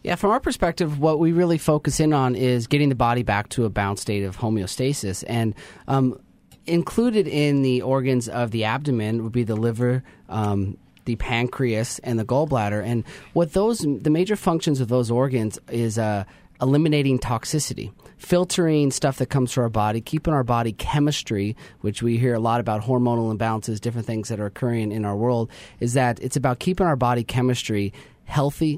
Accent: American